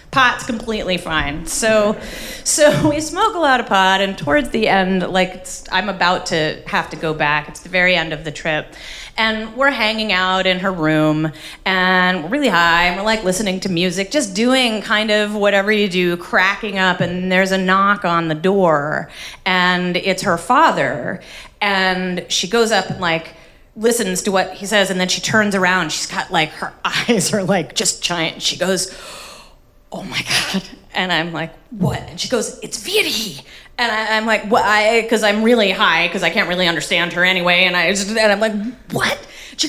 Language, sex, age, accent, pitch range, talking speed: English, female, 30-49, American, 180-260 Hz, 200 wpm